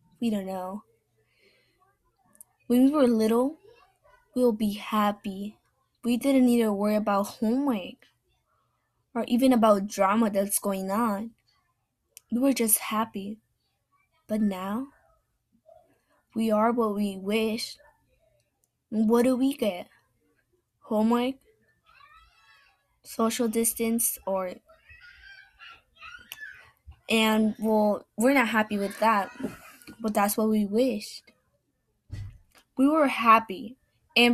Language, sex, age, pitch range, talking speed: English, female, 10-29, 210-250 Hz, 105 wpm